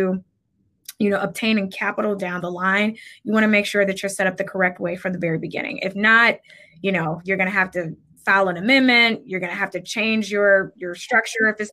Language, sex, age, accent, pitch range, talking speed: English, female, 20-39, American, 190-220 Hz, 235 wpm